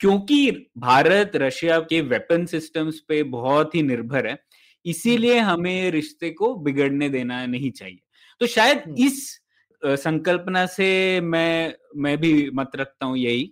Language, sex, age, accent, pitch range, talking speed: Hindi, male, 20-39, native, 145-185 Hz, 140 wpm